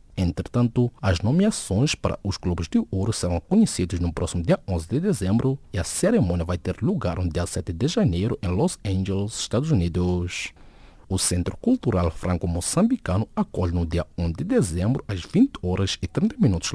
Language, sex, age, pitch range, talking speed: English, male, 50-69, 85-135 Hz, 170 wpm